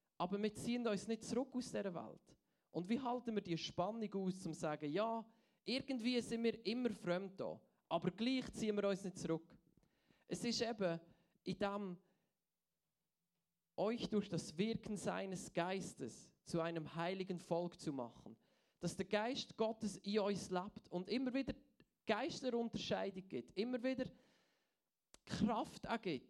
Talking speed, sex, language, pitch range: 150 wpm, male, German, 175-215 Hz